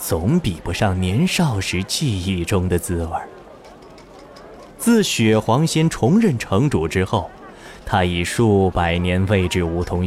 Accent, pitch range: native, 95-145 Hz